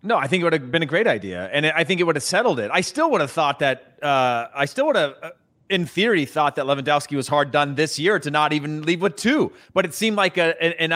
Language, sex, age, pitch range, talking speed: English, male, 30-49, 135-175 Hz, 275 wpm